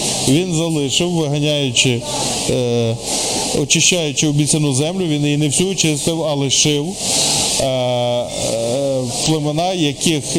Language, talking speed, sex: Ukrainian, 105 wpm, male